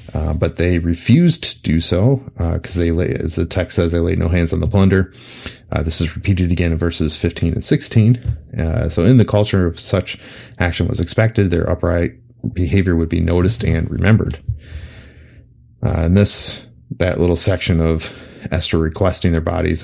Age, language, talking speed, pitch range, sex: 30-49, English, 185 wpm, 85-110 Hz, male